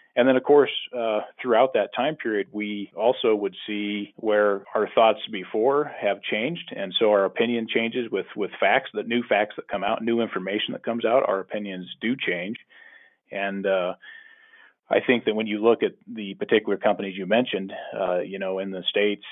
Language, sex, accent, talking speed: English, male, American, 195 wpm